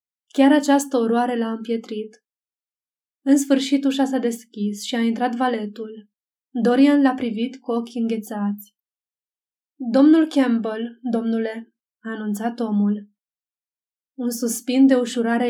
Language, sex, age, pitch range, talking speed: Romanian, female, 20-39, 225-265 Hz, 115 wpm